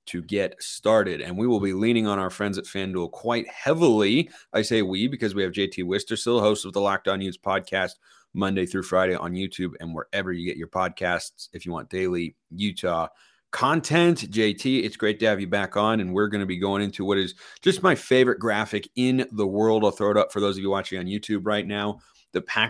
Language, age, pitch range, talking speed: English, 30-49, 95-115 Hz, 230 wpm